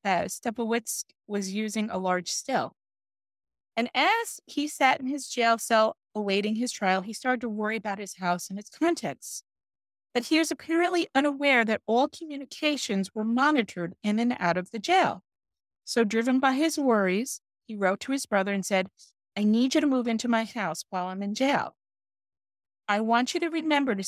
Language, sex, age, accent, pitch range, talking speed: English, female, 30-49, American, 195-270 Hz, 185 wpm